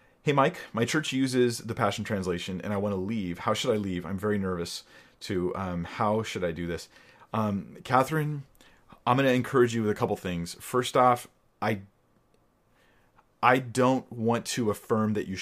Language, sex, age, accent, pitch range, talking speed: English, male, 30-49, American, 95-115 Hz, 185 wpm